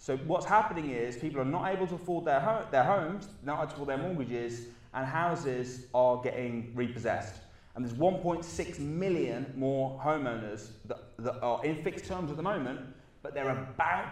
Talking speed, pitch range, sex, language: 185 wpm, 115-145 Hz, male, English